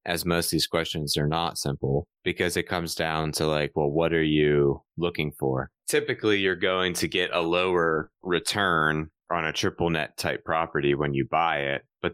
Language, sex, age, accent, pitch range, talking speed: English, male, 20-39, American, 75-85 Hz, 195 wpm